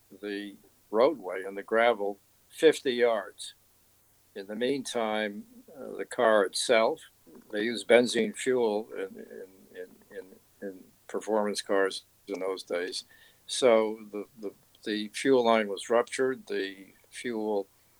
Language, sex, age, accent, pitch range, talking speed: English, male, 60-79, American, 100-120 Hz, 115 wpm